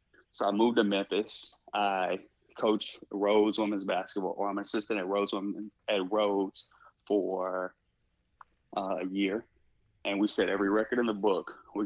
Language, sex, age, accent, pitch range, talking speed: English, male, 20-39, American, 95-105 Hz, 140 wpm